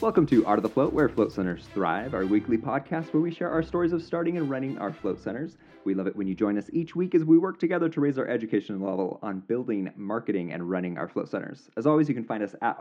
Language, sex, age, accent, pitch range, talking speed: English, male, 30-49, American, 95-130 Hz, 270 wpm